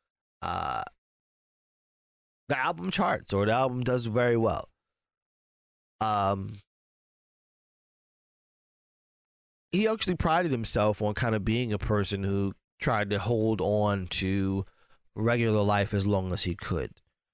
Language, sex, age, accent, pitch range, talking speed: English, male, 30-49, American, 100-125 Hz, 120 wpm